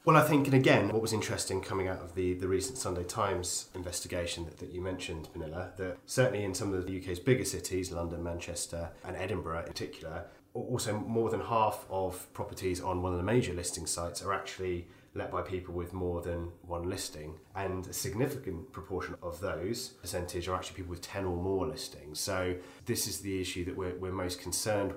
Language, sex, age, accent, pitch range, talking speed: English, male, 30-49, British, 85-100 Hz, 205 wpm